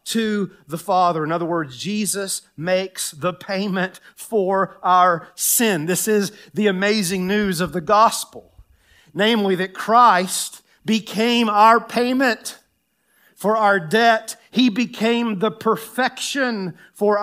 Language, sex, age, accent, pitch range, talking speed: English, male, 40-59, American, 170-215 Hz, 120 wpm